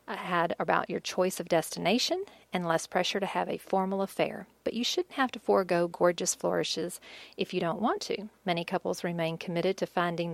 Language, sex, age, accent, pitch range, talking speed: English, female, 40-59, American, 180-225 Hz, 190 wpm